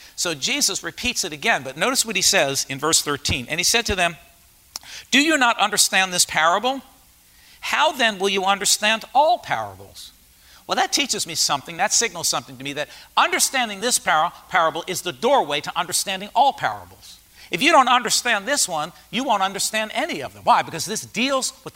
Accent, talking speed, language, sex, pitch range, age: American, 190 wpm, English, male, 150-220 Hz, 50-69